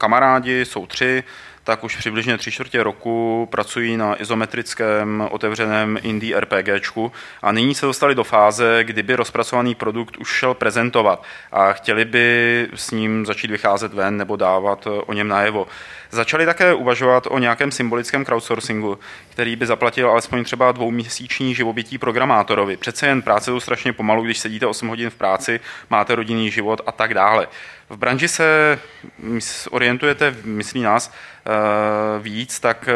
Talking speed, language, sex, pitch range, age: 145 wpm, Czech, male, 110-125 Hz, 20-39